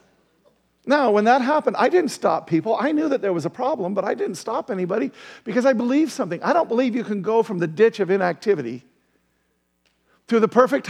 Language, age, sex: English, 50-69, male